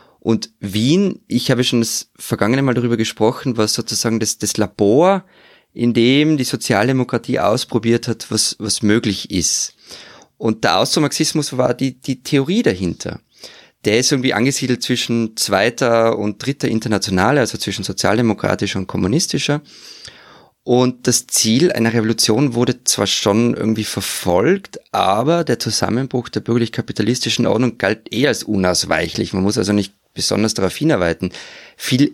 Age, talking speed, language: 20-39, 140 wpm, German